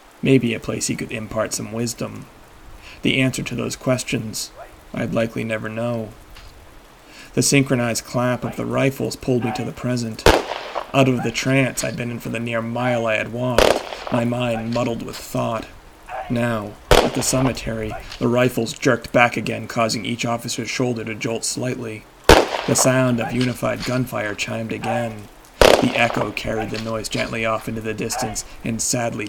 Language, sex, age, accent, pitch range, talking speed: English, male, 30-49, American, 115-125 Hz, 170 wpm